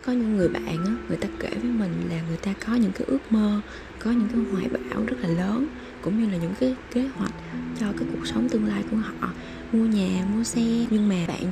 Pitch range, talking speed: 175-230 Hz, 250 wpm